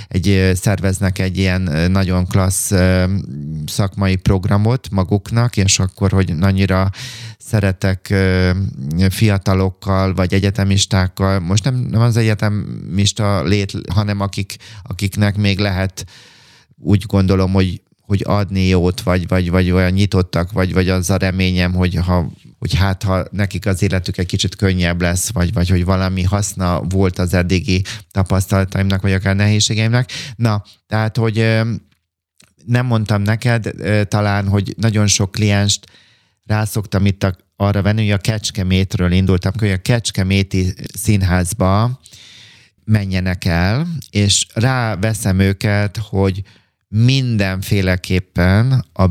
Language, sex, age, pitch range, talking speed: Hungarian, male, 30-49, 95-105 Hz, 120 wpm